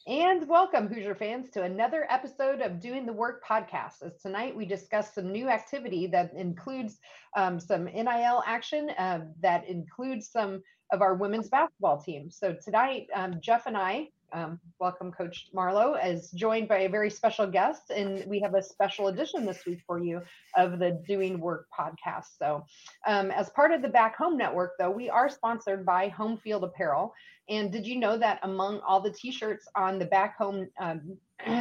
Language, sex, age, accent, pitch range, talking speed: English, female, 30-49, American, 185-230 Hz, 185 wpm